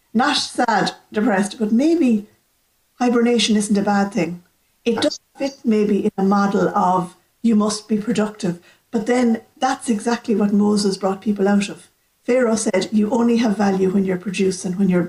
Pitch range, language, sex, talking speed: 190-230 Hz, English, female, 170 wpm